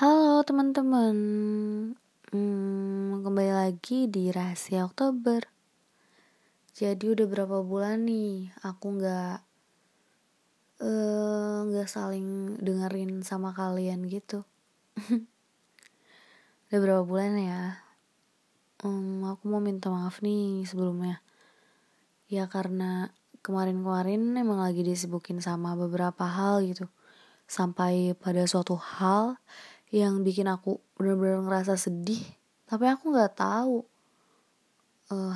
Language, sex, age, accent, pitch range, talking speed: Indonesian, female, 20-39, native, 185-210 Hz, 100 wpm